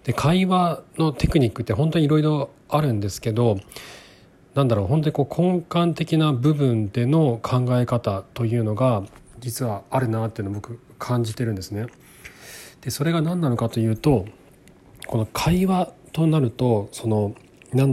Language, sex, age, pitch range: Japanese, male, 40-59, 110-150 Hz